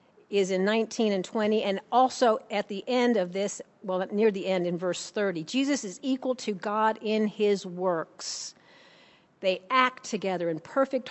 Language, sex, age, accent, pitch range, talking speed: English, female, 50-69, American, 200-270 Hz, 175 wpm